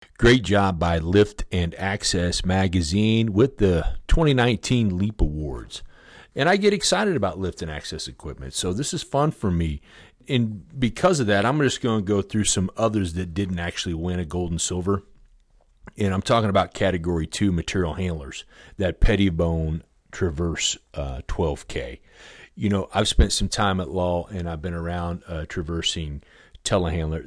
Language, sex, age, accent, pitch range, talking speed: English, male, 40-59, American, 80-100 Hz, 165 wpm